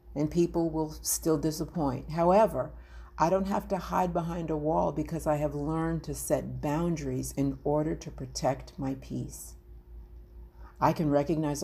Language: English